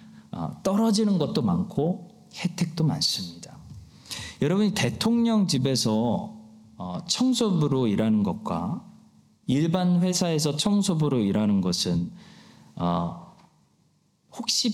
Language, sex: Korean, male